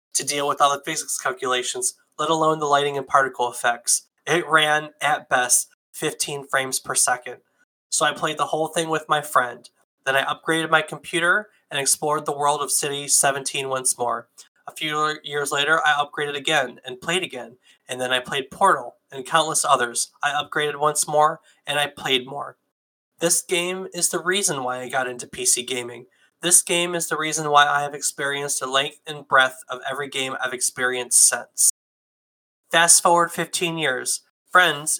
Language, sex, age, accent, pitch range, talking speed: English, male, 20-39, American, 135-160 Hz, 180 wpm